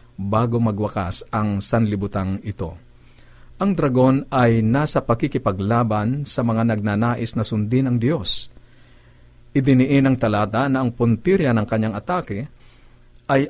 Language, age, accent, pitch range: Filipino, 50-69, native, 110-130 Hz